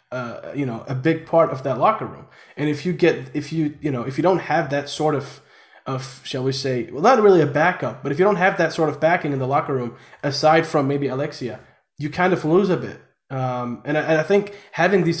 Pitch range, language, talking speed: 135-175 Hz, English, 255 wpm